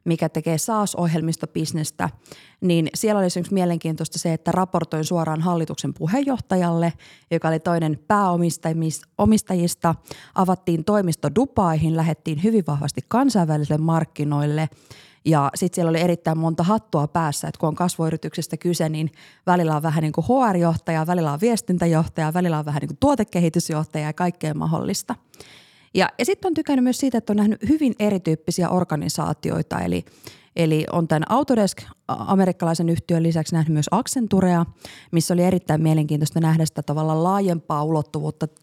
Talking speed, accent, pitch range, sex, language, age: 140 wpm, native, 155-180 Hz, female, Finnish, 20-39